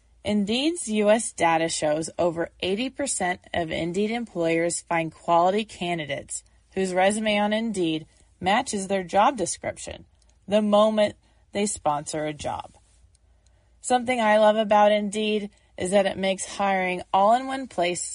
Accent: American